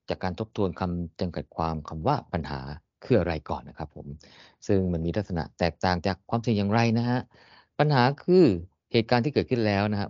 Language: Thai